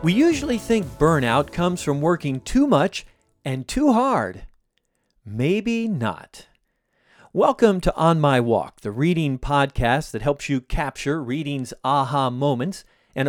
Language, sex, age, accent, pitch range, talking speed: English, male, 40-59, American, 130-185 Hz, 135 wpm